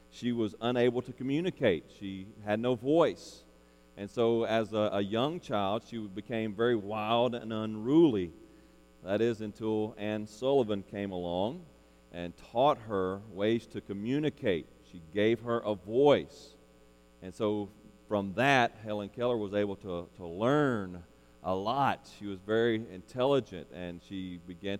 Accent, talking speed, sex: American, 145 wpm, male